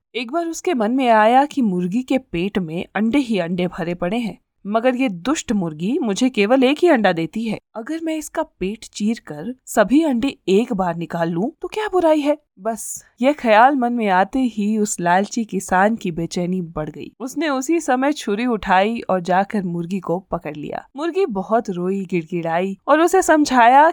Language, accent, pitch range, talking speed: Hindi, native, 185-265 Hz, 190 wpm